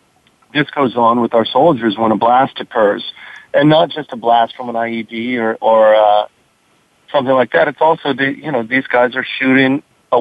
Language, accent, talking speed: English, American, 200 wpm